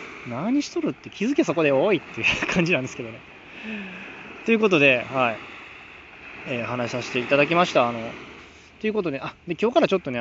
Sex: male